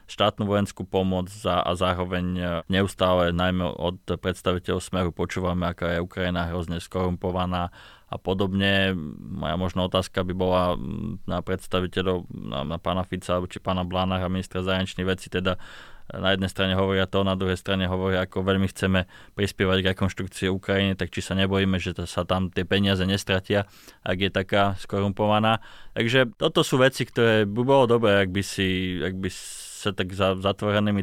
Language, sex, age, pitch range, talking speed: Slovak, male, 20-39, 90-105 Hz, 165 wpm